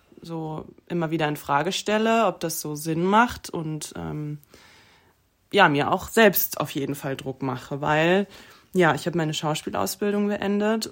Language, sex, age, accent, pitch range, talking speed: German, female, 20-39, German, 155-205 Hz, 160 wpm